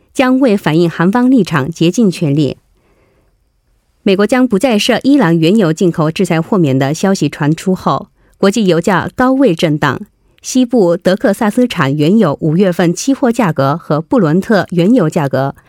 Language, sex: Korean, female